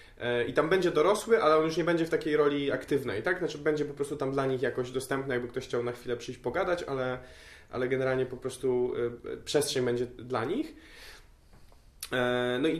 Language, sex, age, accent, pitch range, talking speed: Polish, male, 20-39, native, 130-160 Hz, 190 wpm